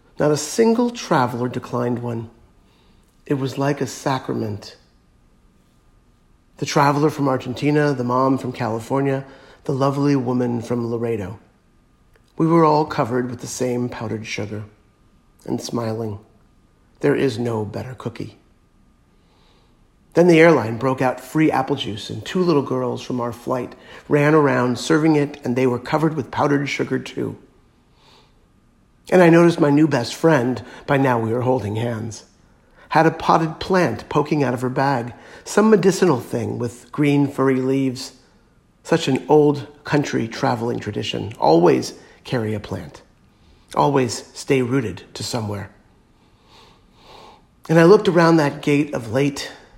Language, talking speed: English, 145 wpm